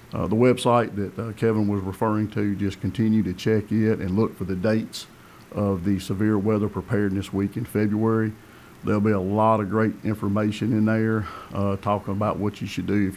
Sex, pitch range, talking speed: male, 100-115 Hz, 200 wpm